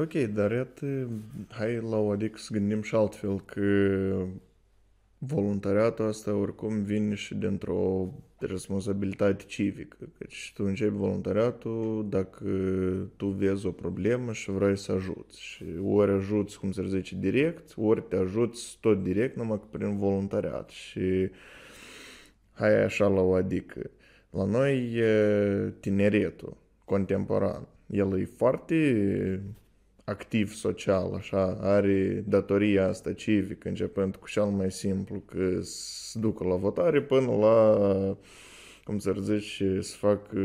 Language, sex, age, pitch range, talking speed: Romanian, male, 20-39, 95-105 Hz, 125 wpm